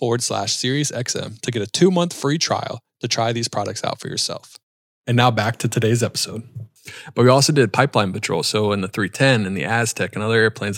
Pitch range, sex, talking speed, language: 105-125 Hz, male, 215 wpm, English